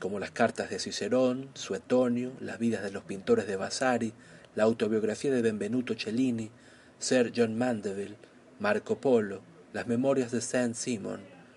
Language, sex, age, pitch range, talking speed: Spanish, male, 40-59, 115-130 Hz, 140 wpm